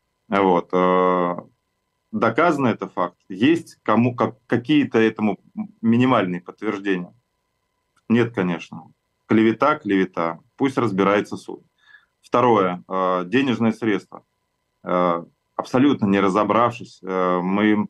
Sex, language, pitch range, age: male, Russian, 95-120 Hz, 20-39